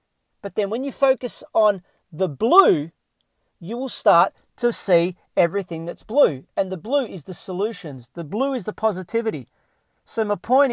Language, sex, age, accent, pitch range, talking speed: English, male, 40-59, Australian, 180-225 Hz, 170 wpm